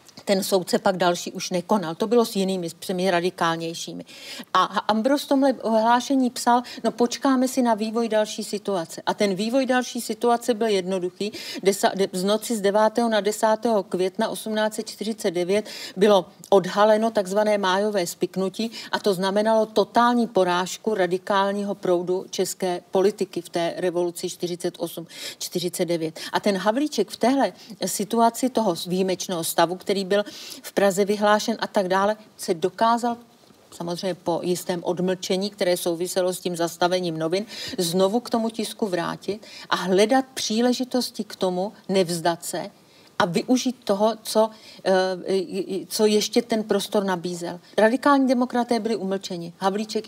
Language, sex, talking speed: Czech, female, 140 wpm